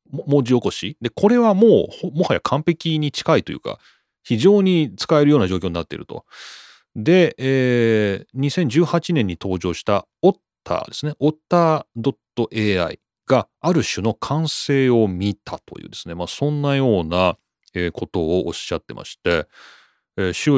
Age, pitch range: 30-49, 95-155 Hz